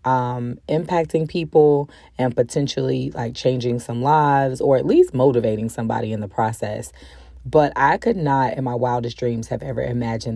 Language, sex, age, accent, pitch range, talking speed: English, female, 30-49, American, 120-145 Hz, 160 wpm